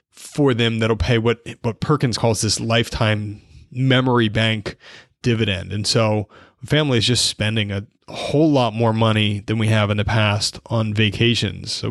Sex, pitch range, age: male, 105-120 Hz, 30-49